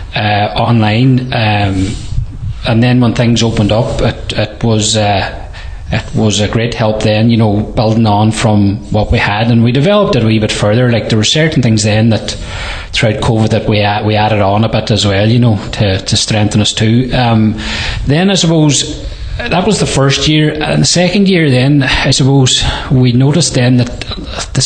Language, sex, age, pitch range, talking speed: English, male, 30-49, 110-135 Hz, 200 wpm